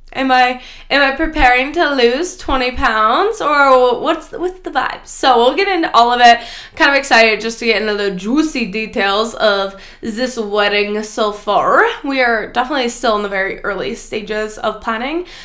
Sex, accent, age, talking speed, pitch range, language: female, American, 10-29, 190 wpm, 235-350 Hz, English